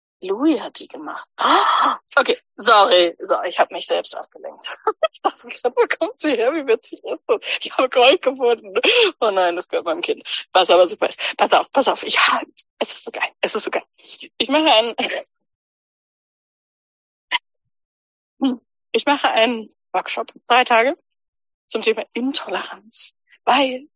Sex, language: female, German